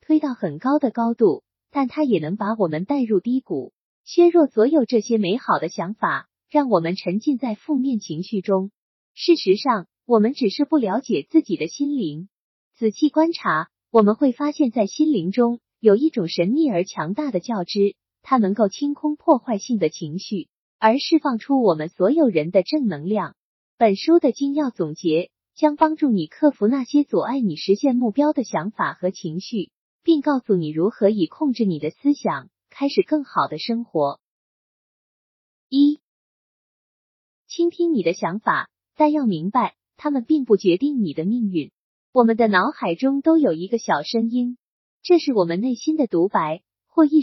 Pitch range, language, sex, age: 195-295 Hz, Chinese, female, 20-39